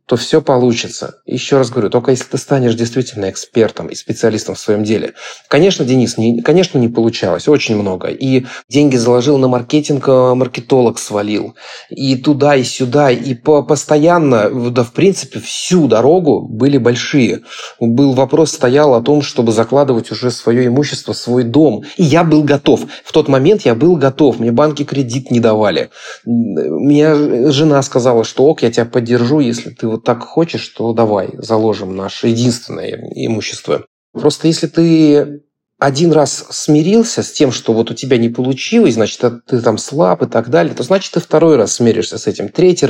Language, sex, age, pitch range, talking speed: Russian, male, 20-39, 115-150 Hz, 170 wpm